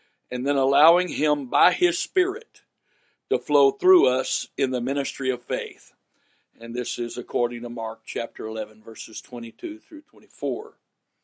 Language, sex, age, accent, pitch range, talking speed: English, male, 60-79, American, 120-185 Hz, 150 wpm